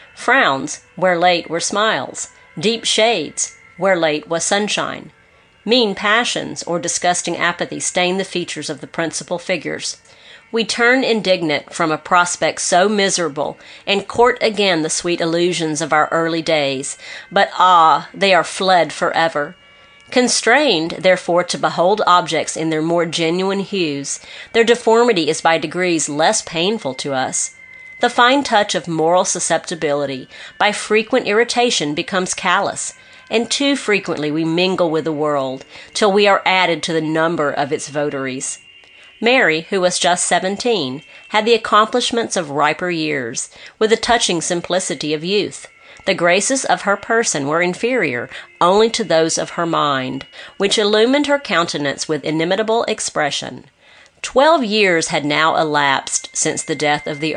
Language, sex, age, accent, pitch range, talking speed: English, female, 40-59, American, 160-210 Hz, 150 wpm